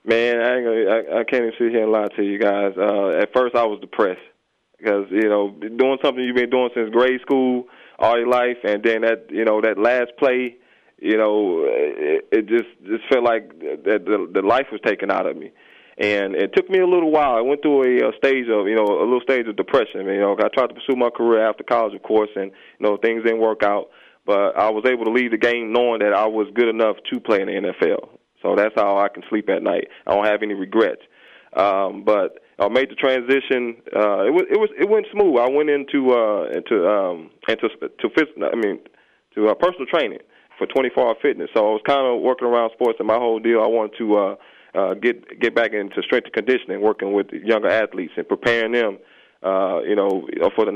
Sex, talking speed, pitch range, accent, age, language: male, 240 wpm, 110-140 Hz, American, 20-39, English